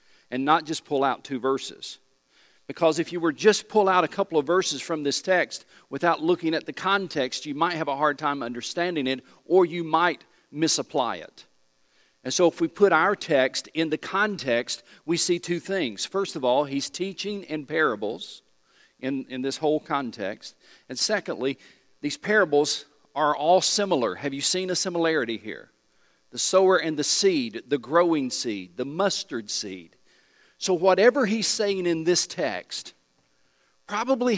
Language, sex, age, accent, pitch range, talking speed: English, male, 50-69, American, 125-185 Hz, 170 wpm